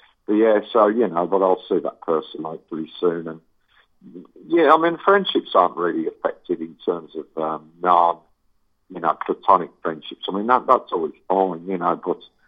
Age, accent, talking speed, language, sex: 50-69, British, 190 wpm, English, male